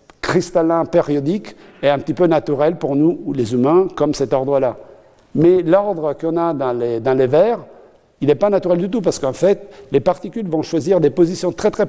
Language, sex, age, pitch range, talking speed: French, male, 60-79, 130-170 Hz, 200 wpm